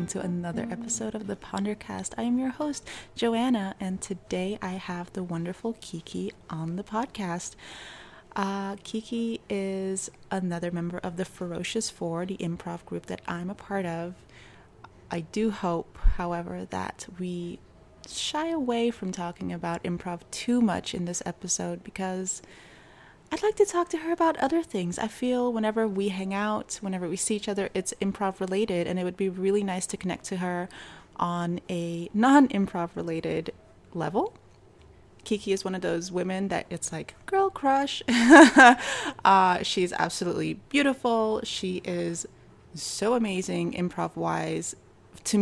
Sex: female